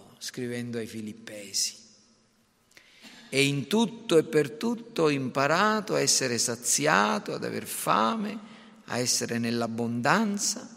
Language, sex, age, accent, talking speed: Italian, male, 50-69, native, 110 wpm